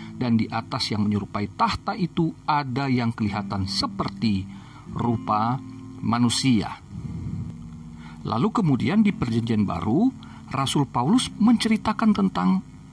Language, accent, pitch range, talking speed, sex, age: Indonesian, native, 110-160 Hz, 100 wpm, male, 50-69